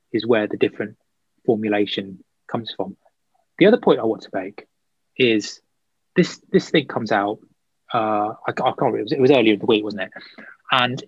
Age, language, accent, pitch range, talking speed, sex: 20-39, English, British, 105-135 Hz, 195 wpm, male